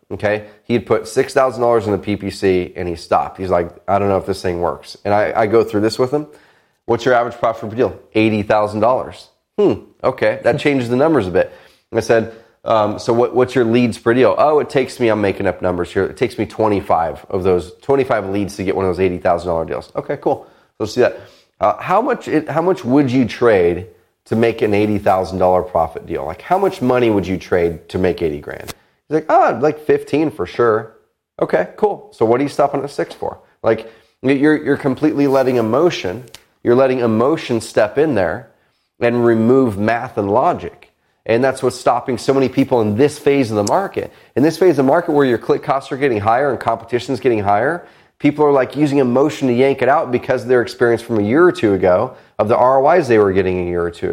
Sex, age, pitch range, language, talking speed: male, 30-49, 105-135 Hz, English, 220 wpm